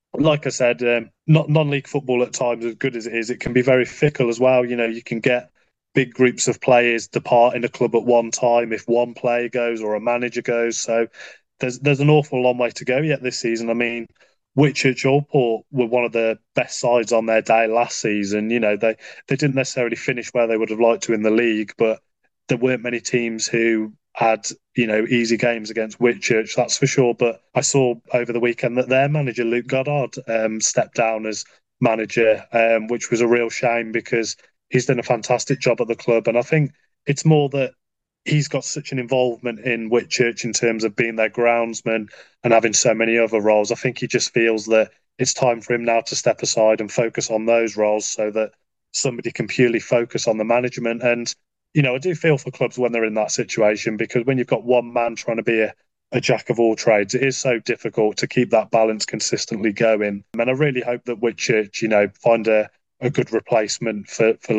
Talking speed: 225 wpm